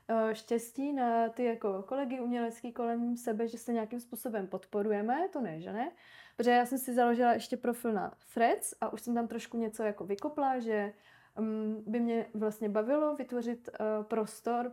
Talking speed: 165 wpm